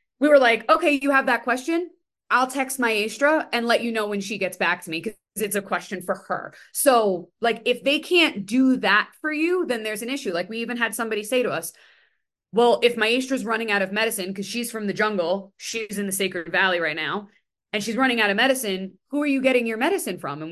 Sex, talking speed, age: female, 235 wpm, 20-39